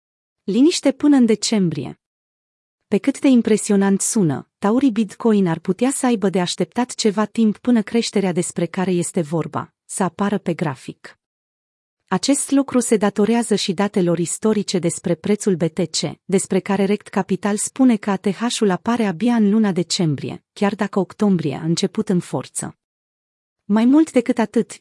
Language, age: Romanian, 30-49